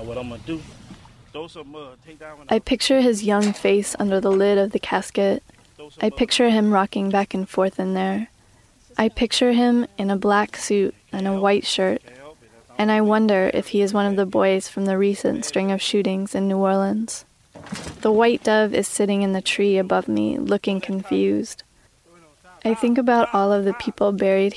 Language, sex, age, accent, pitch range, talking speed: English, female, 10-29, American, 190-215 Hz, 170 wpm